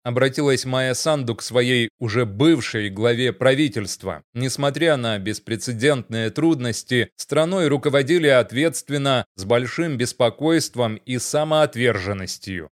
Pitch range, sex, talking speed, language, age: 120-145 Hz, male, 100 wpm, Russian, 30-49